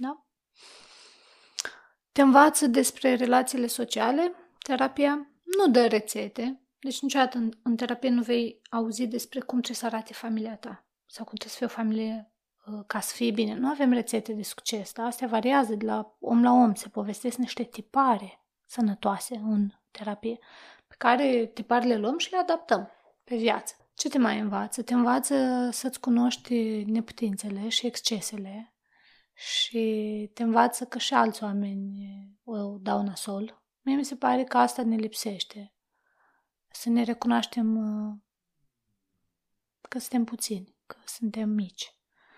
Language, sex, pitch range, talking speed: Romanian, female, 215-250 Hz, 145 wpm